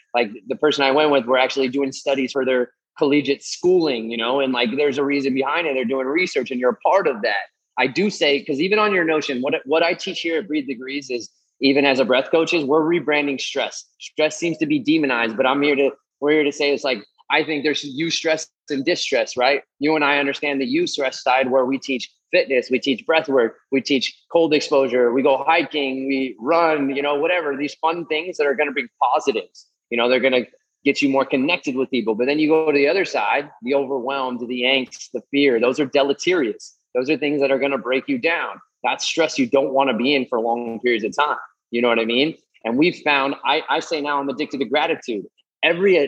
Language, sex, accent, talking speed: English, male, American, 240 wpm